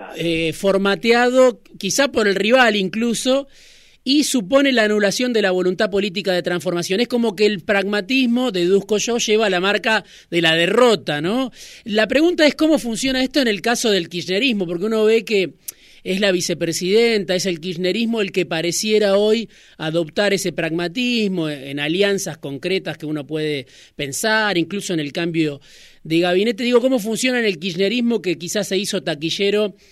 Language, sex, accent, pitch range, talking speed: Spanish, male, Argentinian, 170-220 Hz, 165 wpm